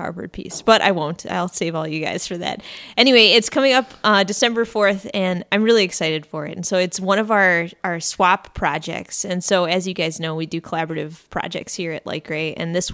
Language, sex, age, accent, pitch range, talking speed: English, female, 20-39, American, 170-210 Hz, 225 wpm